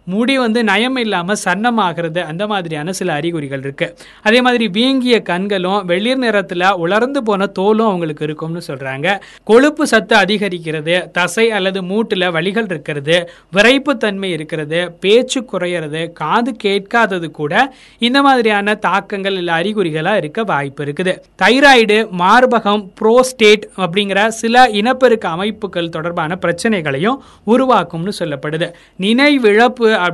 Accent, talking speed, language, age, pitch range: native, 115 wpm, Tamil, 20-39, 170-225 Hz